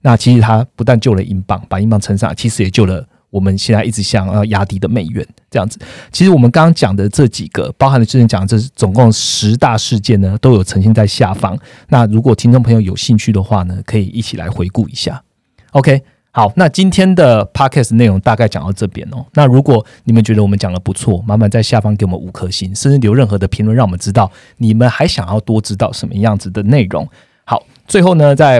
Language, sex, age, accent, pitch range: Chinese, male, 30-49, native, 100-125 Hz